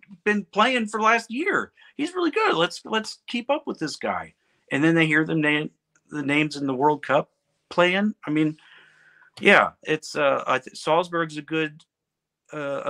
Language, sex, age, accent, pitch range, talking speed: English, male, 40-59, American, 115-155 Hz, 180 wpm